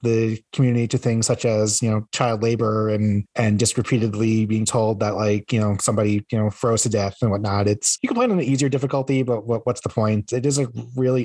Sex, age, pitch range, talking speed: male, 30-49, 110-130 Hz, 245 wpm